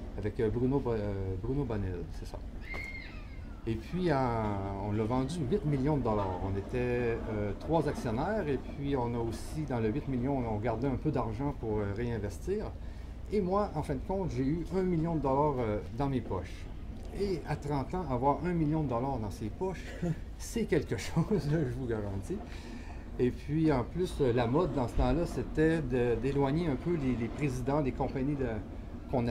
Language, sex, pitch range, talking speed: French, male, 105-145 Hz, 175 wpm